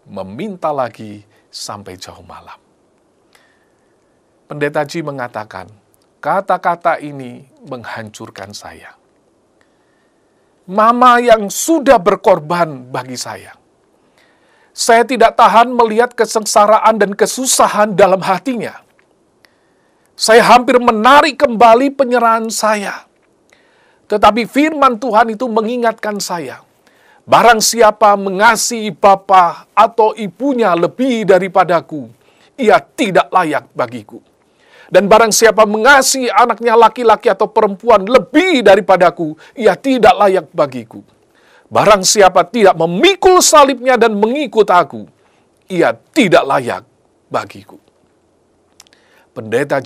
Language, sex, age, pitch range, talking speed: Indonesian, male, 50-69, 140-230 Hz, 95 wpm